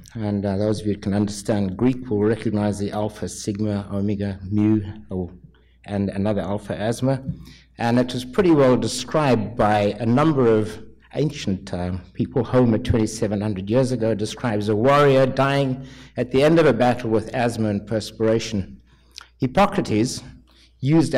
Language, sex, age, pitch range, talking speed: English, male, 60-79, 105-130 Hz, 150 wpm